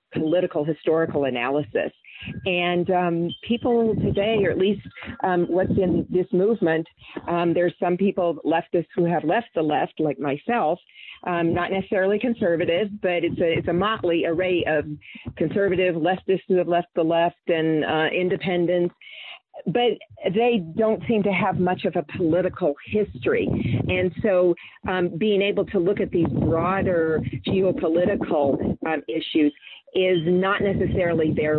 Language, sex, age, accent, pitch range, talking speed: English, female, 40-59, American, 155-190 Hz, 145 wpm